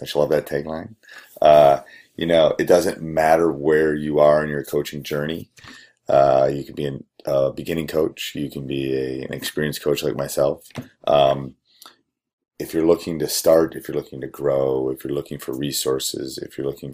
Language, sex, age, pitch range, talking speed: English, male, 30-49, 70-80 Hz, 185 wpm